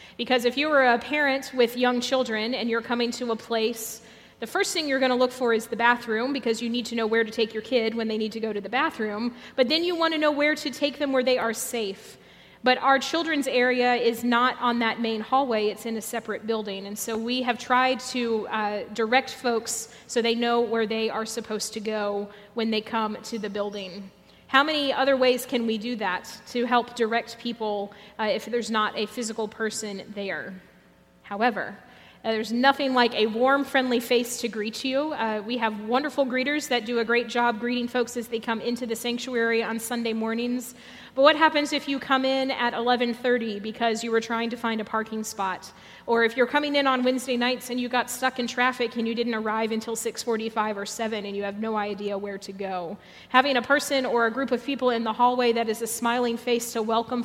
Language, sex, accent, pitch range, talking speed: English, female, American, 220-250 Hz, 225 wpm